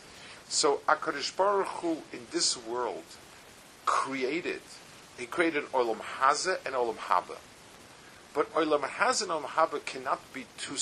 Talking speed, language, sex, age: 135 wpm, English, male, 50-69